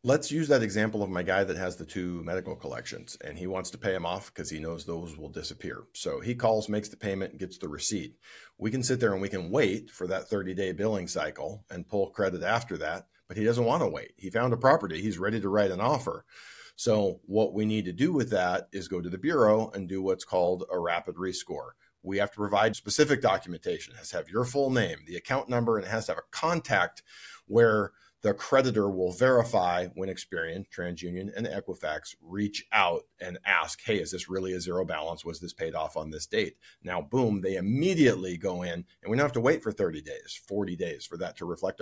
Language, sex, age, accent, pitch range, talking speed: English, male, 40-59, American, 95-120 Hz, 235 wpm